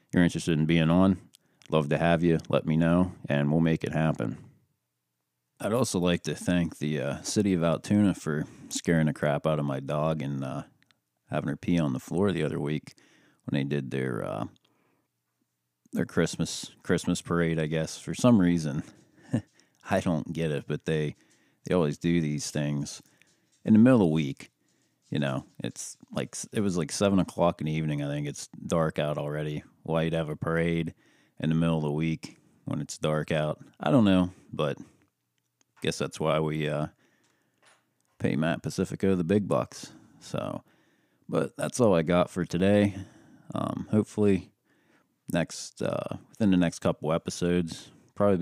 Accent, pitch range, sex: American, 75-90 Hz, male